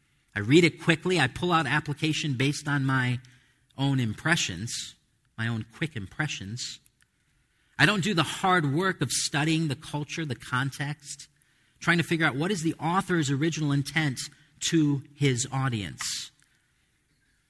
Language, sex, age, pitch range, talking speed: English, male, 40-59, 115-155 Hz, 145 wpm